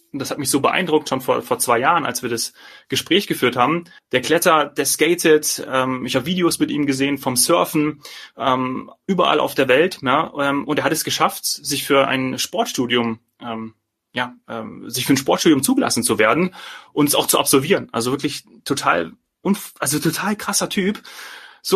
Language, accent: German, German